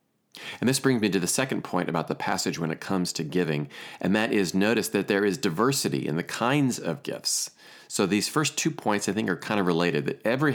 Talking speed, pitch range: 240 wpm, 90-115 Hz